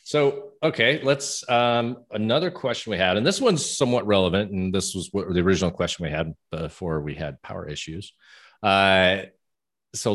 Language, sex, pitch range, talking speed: English, male, 85-100 Hz, 165 wpm